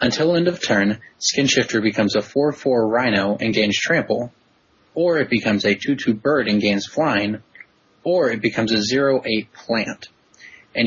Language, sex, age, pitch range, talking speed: English, male, 20-39, 105-120 Hz, 160 wpm